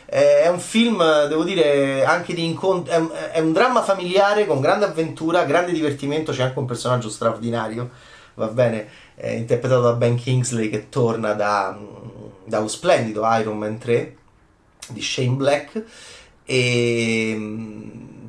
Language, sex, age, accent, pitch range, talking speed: Italian, male, 30-49, native, 120-160 Hz, 140 wpm